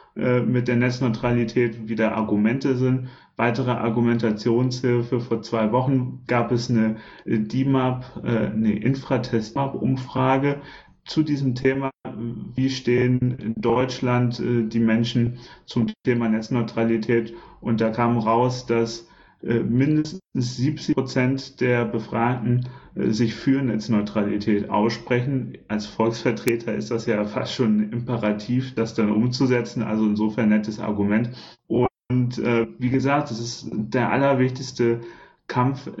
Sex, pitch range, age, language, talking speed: male, 110-125 Hz, 30-49, German, 115 wpm